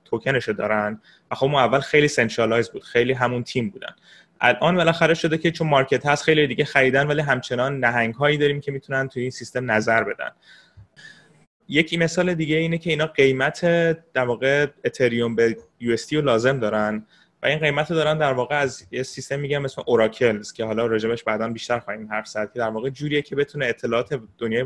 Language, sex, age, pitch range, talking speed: Persian, male, 20-39, 115-150 Hz, 185 wpm